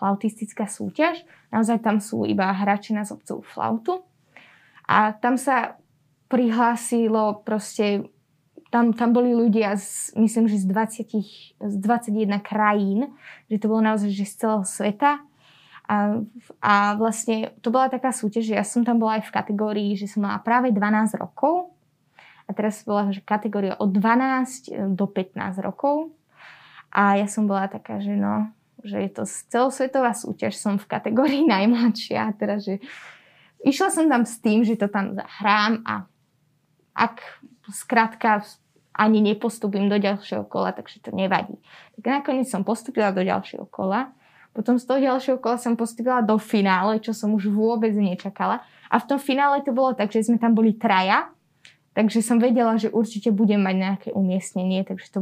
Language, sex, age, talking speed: Slovak, female, 20-39, 160 wpm